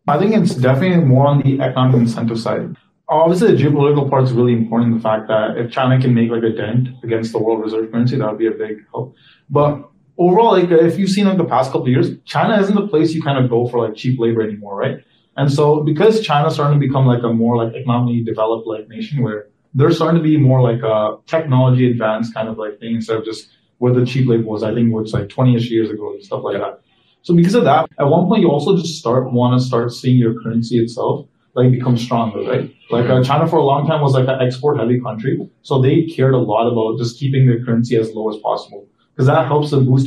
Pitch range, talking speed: 115-145 Hz, 250 wpm